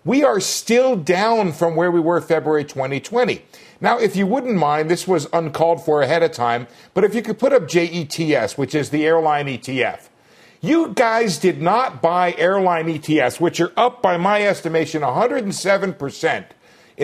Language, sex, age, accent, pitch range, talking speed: English, male, 50-69, American, 155-220 Hz, 170 wpm